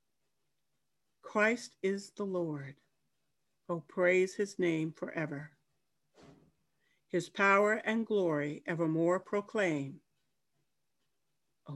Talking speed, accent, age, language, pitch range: 80 wpm, American, 60-79, English, 150-195 Hz